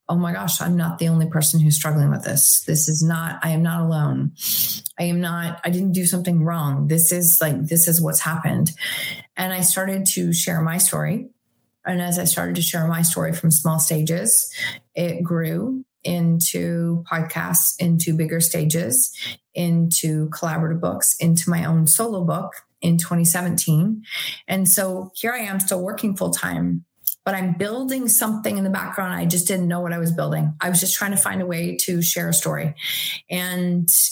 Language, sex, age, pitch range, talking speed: English, female, 30-49, 165-185 Hz, 185 wpm